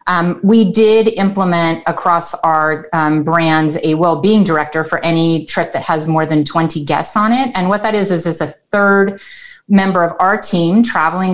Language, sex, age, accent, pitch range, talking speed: English, female, 30-49, American, 160-200 Hz, 185 wpm